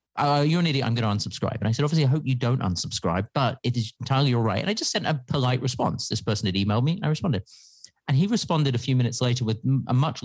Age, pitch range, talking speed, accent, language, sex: 40-59, 110-150 Hz, 280 wpm, British, English, male